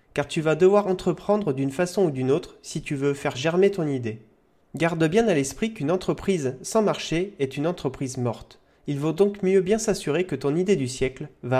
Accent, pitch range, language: French, 135-190 Hz, French